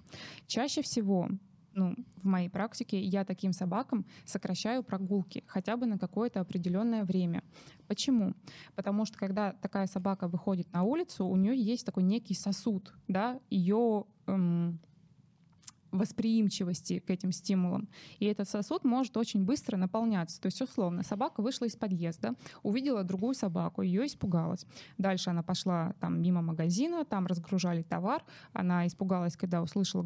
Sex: female